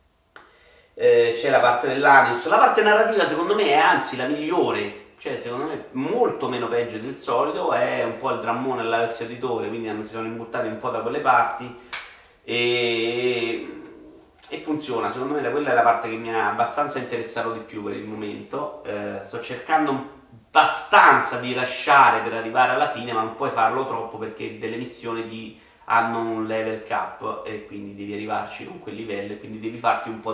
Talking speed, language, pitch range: 190 wpm, Italian, 115-135 Hz